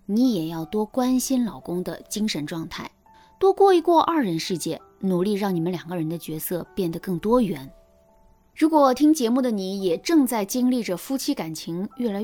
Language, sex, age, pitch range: Chinese, female, 20-39, 175-265 Hz